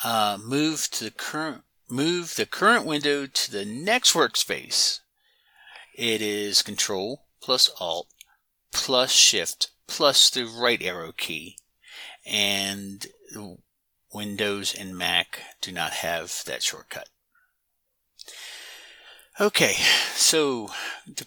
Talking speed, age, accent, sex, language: 105 wpm, 50-69, American, male, English